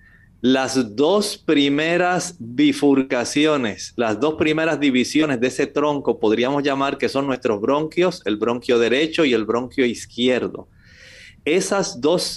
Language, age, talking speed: Spanish, 40-59, 125 wpm